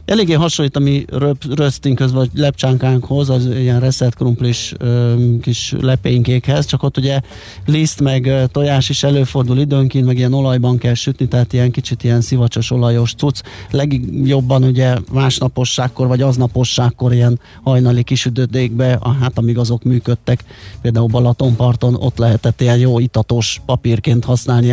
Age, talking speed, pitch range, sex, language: 30-49, 140 wpm, 120-135 Hz, male, Hungarian